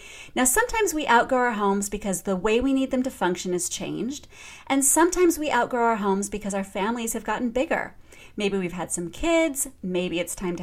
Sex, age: female, 30-49